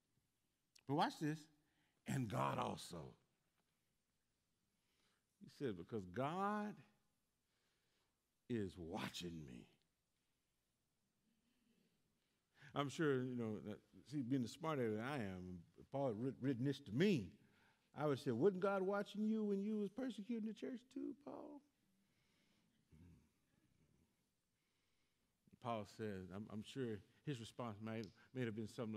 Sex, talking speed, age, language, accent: male, 120 wpm, 50-69, English, American